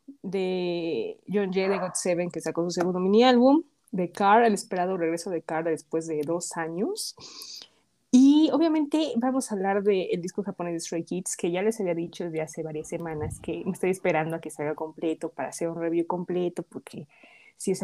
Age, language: 20-39, Spanish